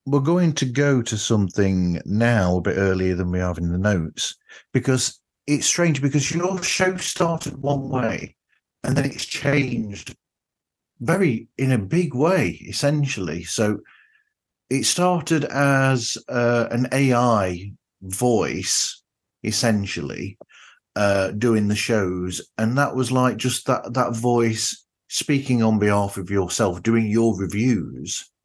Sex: male